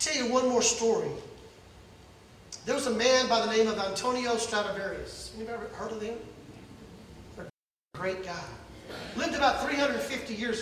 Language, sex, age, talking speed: English, male, 40-59, 145 wpm